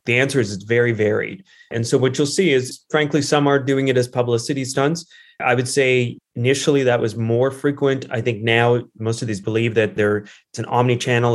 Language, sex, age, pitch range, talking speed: English, male, 20-39, 115-125 Hz, 210 wpm